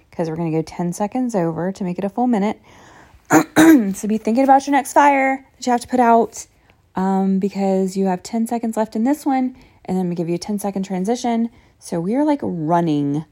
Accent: American